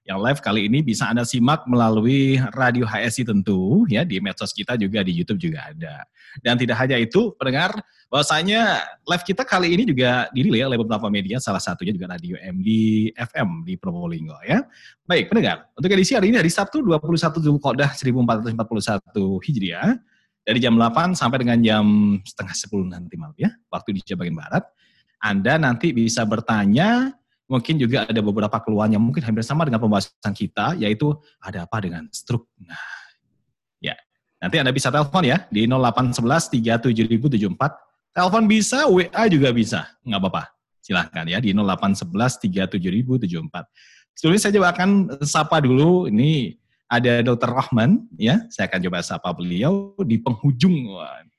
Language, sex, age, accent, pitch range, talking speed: Indonesian, male, 30-49, native, 110-175 Hz, 150 wpm